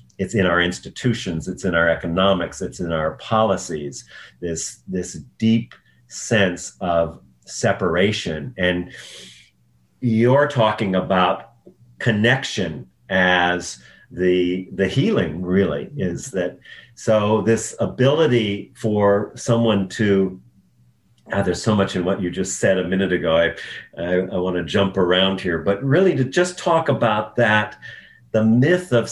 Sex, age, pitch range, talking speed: male, 50-69, 90-120 Hz, 135 wpm